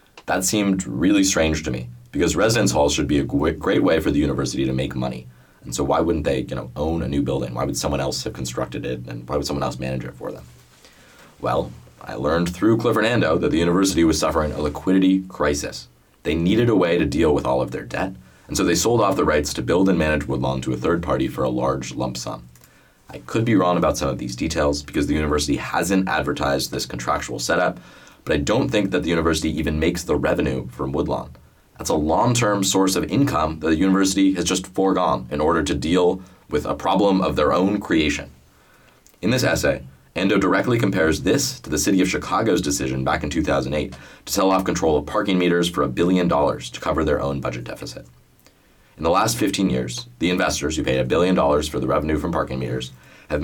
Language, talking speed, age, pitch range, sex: English, 220 wpm, 30-49, 65-90 Hz, male